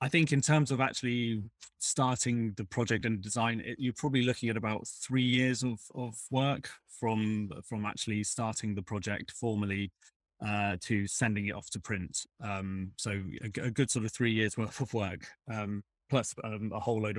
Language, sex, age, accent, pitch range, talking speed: English, male, 30-49, British, 100-125 Hz, 190 wpm